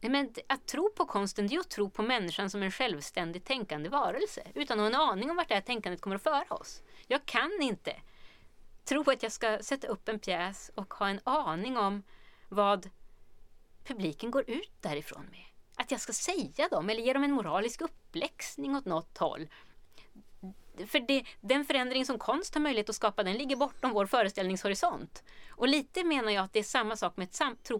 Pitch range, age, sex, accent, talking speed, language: 200-285 Hz, 30-49, female, native, 200 wpm, Swedish